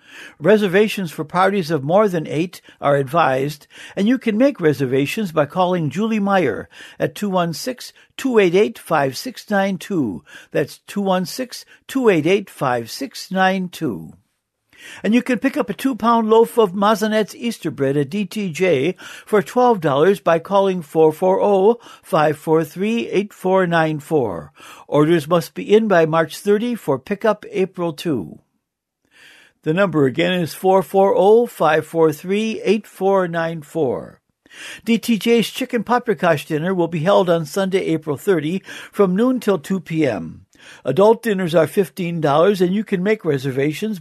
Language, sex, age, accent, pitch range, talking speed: English, male, 60-79, American, 160-210 Hz, 110 wpm